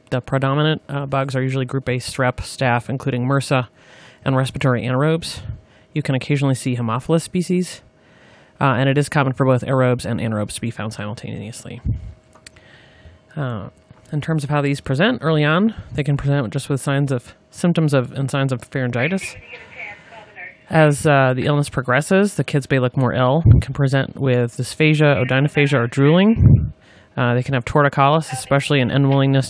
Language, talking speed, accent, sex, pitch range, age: English, 170 wpm, American, male, 125-145 Hz, 30-49